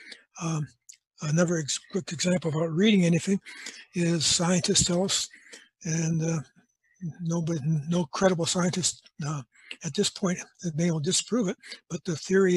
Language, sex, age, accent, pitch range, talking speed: English, male, 60-79, American, 165-195 Hz, 145 wpm